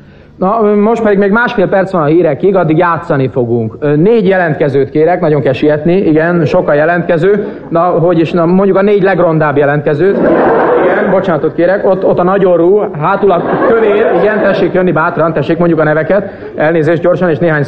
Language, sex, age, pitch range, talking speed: Hungarian, male, 50-69, 160-195 Hz, 175 wpm